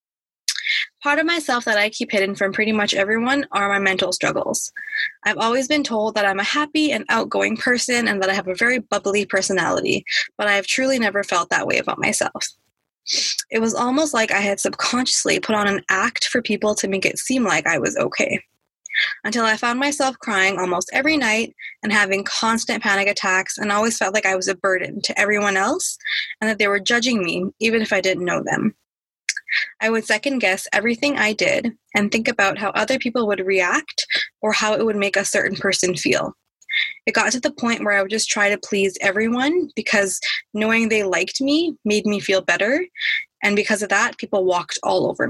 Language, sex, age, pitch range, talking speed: English, female, 20-39, 200-250 Hz, 205 wpm